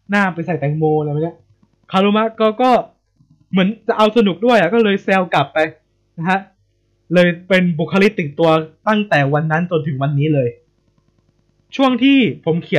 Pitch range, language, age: 130-180 Hz, Thai, 20-39